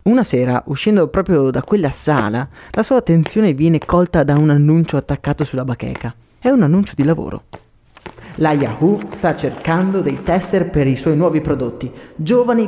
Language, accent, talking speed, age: Italian, native, 165 wpm, 20-39